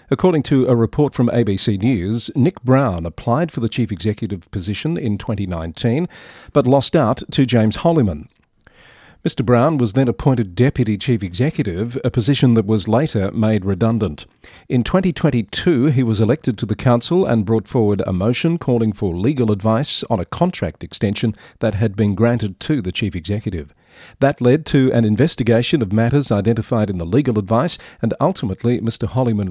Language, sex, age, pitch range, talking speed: English, male, 40-59, 105-130 Hz, 170 wpm